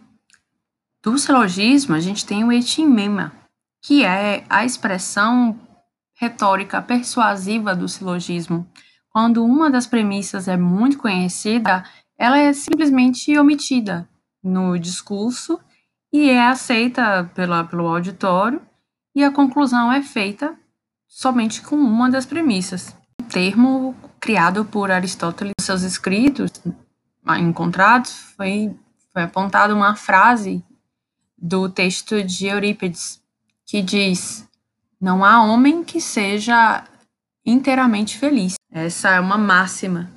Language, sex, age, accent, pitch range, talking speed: Portuguese, female, 20-39, Brazilian, 180-240 Hz, 110 wpm